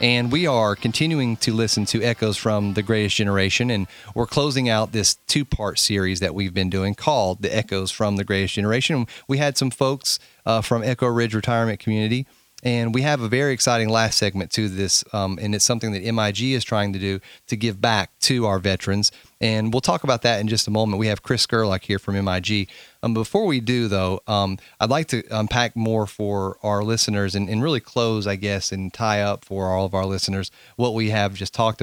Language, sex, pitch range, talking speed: English, male, 100-120 Hz, 220 wpm